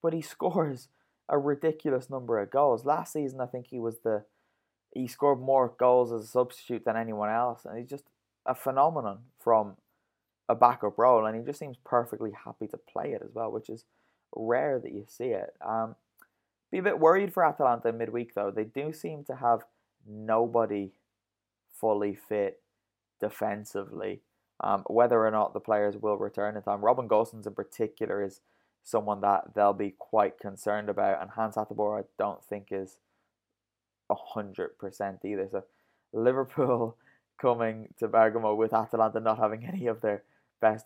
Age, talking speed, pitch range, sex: 20-39, 165 wpm, 105-125 Hz, male